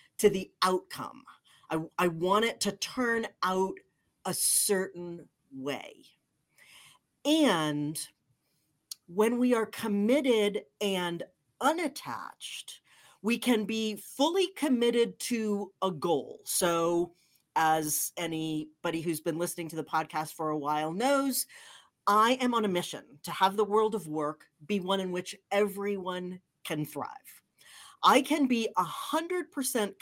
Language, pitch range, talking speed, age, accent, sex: English, 175-255 Hz, 125 wpm, 40-59, American, female